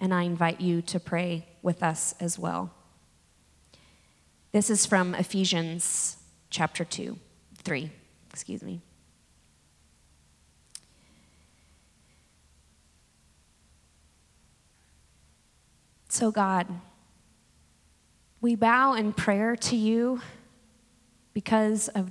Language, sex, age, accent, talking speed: English, female, 20-39, American, 80 wpm